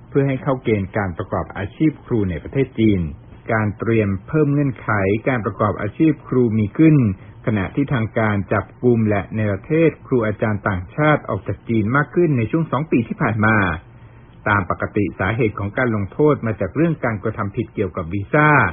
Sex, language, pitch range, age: male, Thai, 105-130 Hz, 60-79